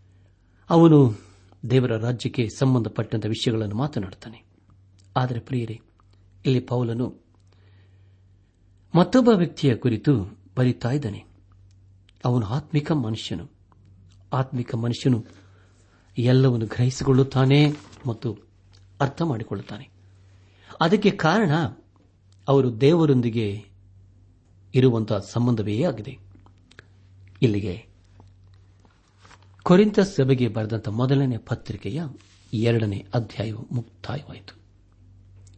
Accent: native